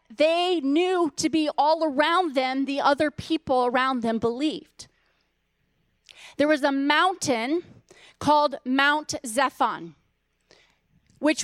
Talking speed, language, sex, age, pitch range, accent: 110 wpm, English, female, 30-49, 235-300 Hz, American